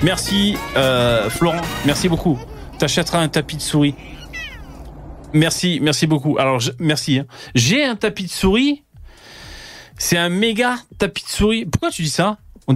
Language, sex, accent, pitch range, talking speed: French, male, French, 125-170 Hz, 155 wpm